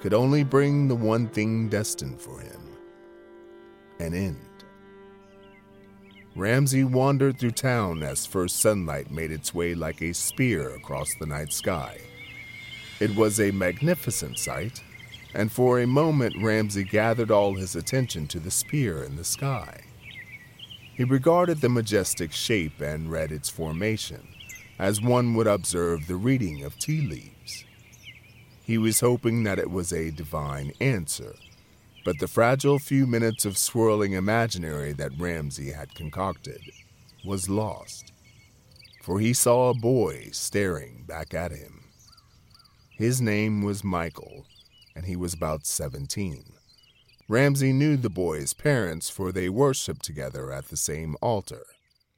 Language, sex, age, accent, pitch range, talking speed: English, male, 40-59, American, 85-125 Hz, 140 wpm